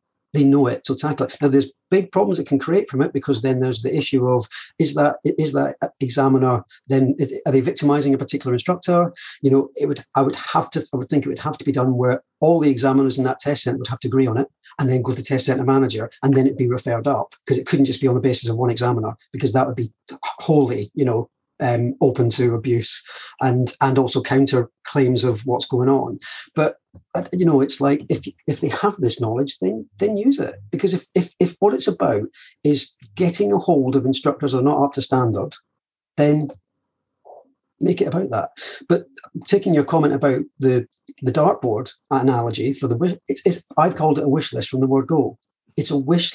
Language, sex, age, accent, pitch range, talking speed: English, male, 40-59, British, 130-150 Hz, 225 wpm